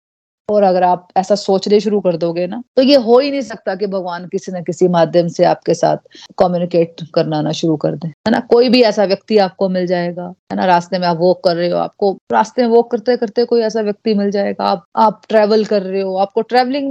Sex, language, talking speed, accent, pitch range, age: female, Hindi, 240 wpm, native, 185-240 Hz, 30-49